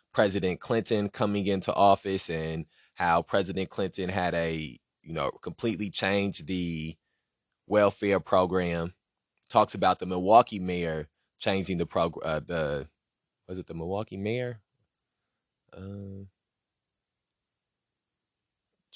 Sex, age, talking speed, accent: male, 20-39, 105 wpm, American